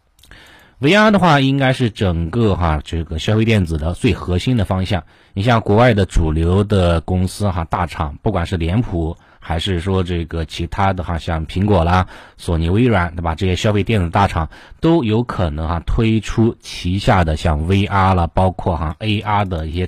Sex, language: male, Chinese